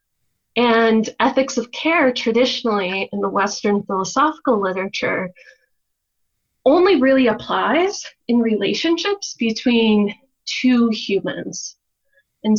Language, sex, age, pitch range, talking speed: English, female, 20-39, 195-260 Hz, 90 wpm